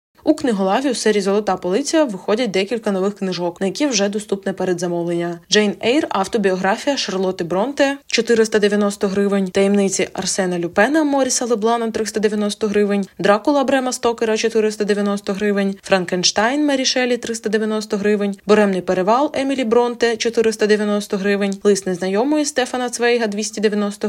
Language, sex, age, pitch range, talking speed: Ukrainian, female, 20-39, 185-225 Hz, 135 wpm